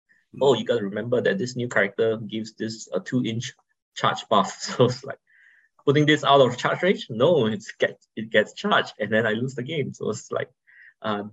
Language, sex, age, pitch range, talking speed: English, male, 20-39, 105-130 Hz, 210 wpm